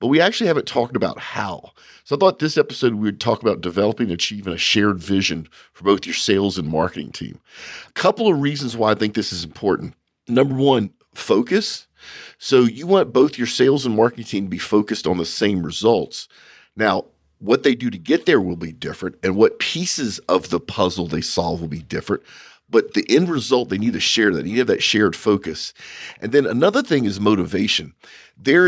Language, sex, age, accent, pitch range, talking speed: English, male, 50-69, American, 100-140 Hz, 210 wpm